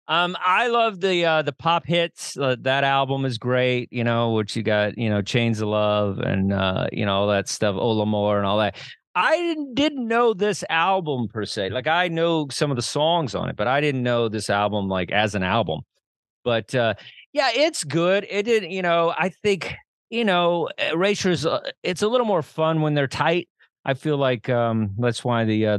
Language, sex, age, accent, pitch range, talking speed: English, male, 40-59, American, 110-165 Hz, 215 wpm